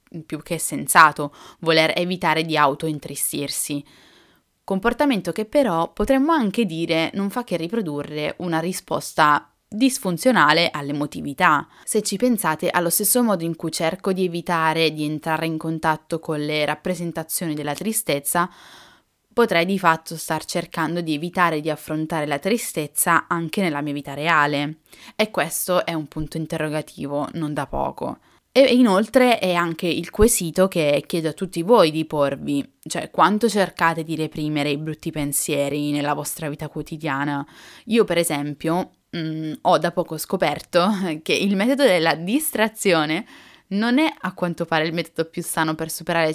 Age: 10-29